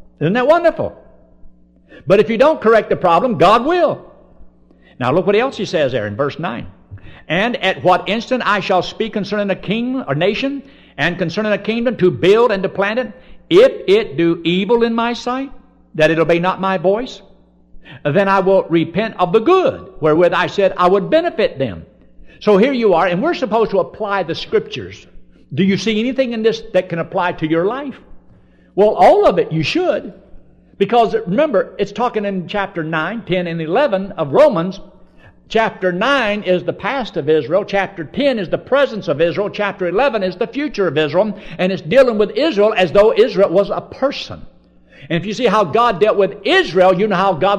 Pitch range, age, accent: 175-235 Hz, 60-79, American